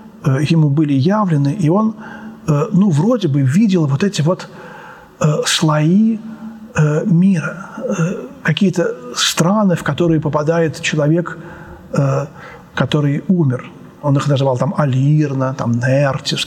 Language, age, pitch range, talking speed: Russian, 40-59, 150-195 Hz, 105 wpm